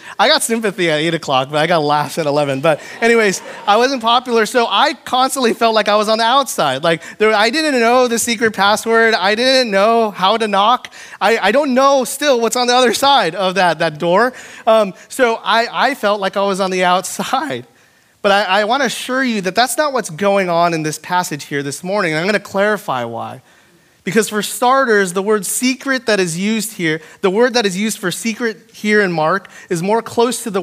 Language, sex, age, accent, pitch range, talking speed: English, male, 30-49, American, 175-230 Hz, 225 wpm